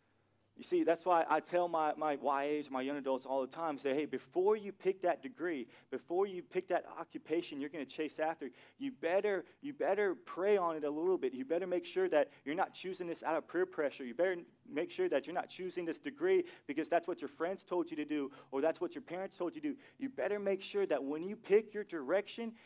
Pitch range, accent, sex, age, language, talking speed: 145-200 Hz, American, male, 30-49, English, 245 wpm